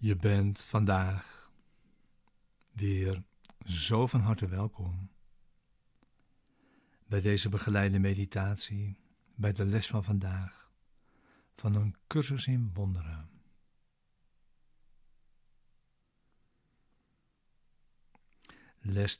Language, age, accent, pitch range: Dutch, 60-79, Dutch, 100-120 Hz